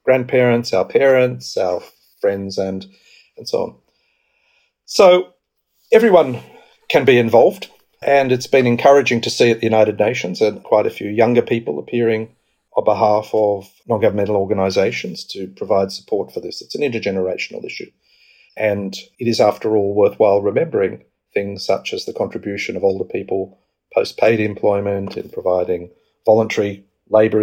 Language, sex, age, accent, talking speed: English, male, 40-59, South African, 145 wpm